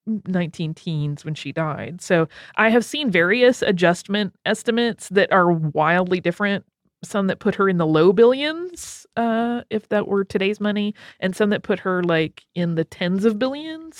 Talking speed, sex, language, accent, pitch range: 175 wpm, female, English, American, 170-230 Hz